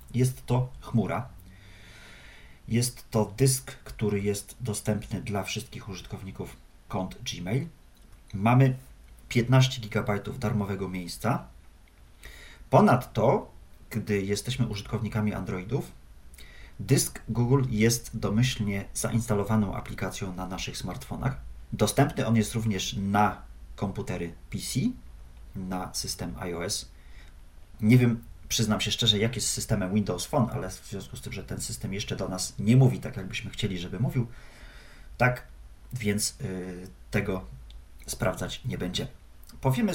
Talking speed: 120 wpm